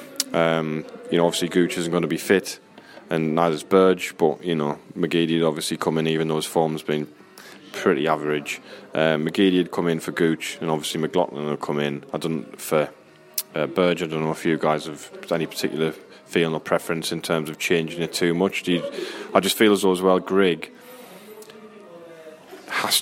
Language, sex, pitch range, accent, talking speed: English, male, 80-95 Hz, British, 200 wpm